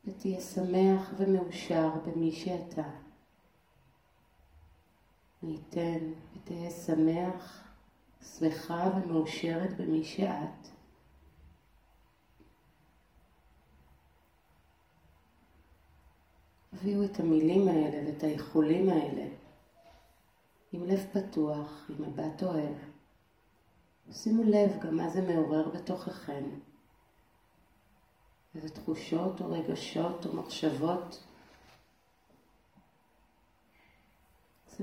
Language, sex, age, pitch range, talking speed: Hebrew, female, 40-59, 140-180 Hz, 65 wpm